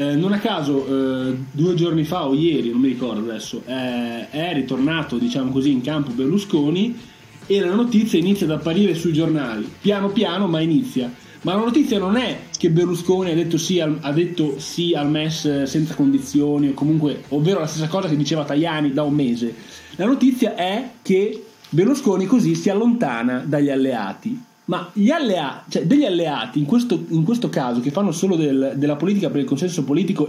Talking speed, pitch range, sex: 180 wpm, 145-200 Hz, male